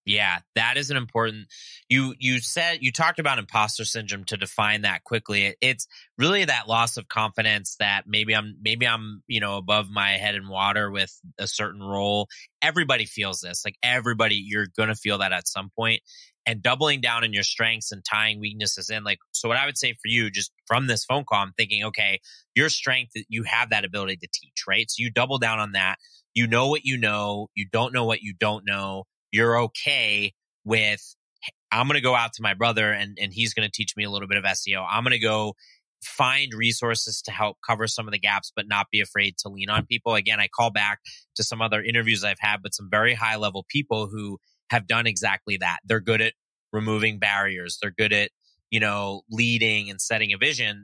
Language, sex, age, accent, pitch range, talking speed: English, male, 30-49, American, 100-115 Hz, 215 wpm